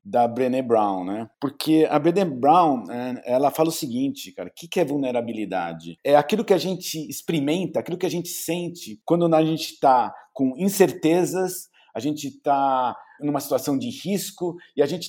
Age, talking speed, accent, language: 50-69, 175 wpm, Brazilian, Portuguese